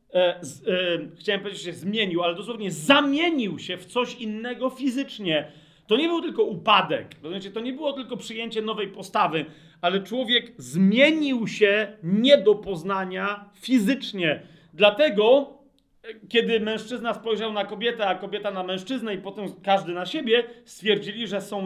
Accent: native